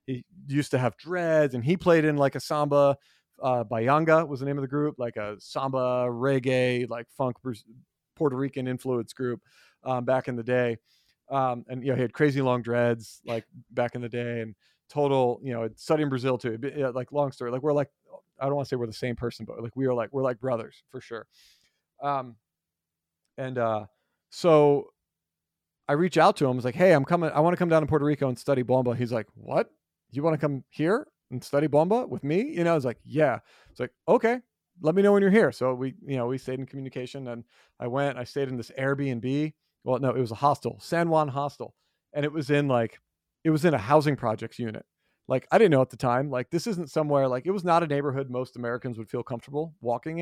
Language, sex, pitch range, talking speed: English, male, 120-150 Hz, 235 wpm